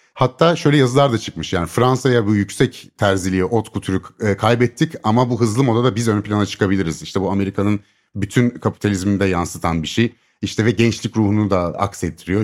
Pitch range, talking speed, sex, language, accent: 100-150 Hz, 180 wpm, male, Turkish, native